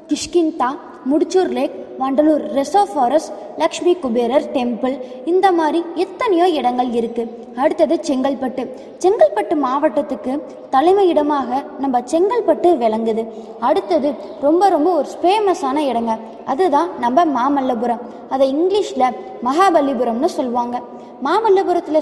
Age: 20-39